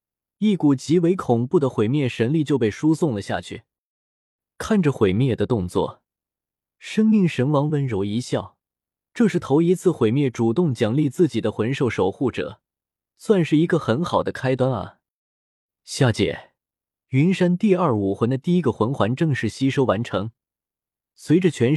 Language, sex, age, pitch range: Chinese, male, 20-39, 110-165 Hz